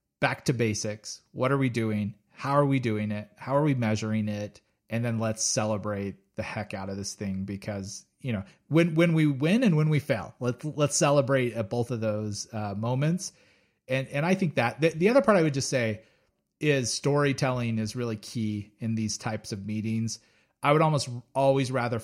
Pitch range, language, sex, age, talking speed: 110-135 Hz, English, male, 30-49, 205 wpm